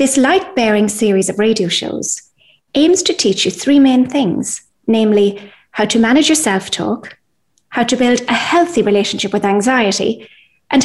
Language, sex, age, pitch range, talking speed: English, female, 30-49, 200-265 Hz, 155 wpm